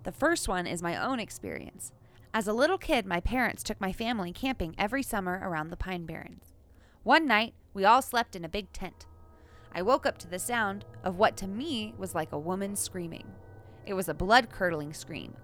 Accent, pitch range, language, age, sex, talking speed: American, 150-220 Hz, English, 20-39, female, 200 wpm